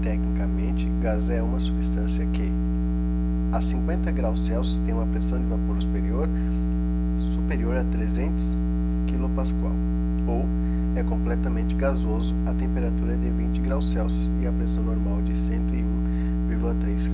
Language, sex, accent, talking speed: Portuguese, male, Brazilian, 125 wpm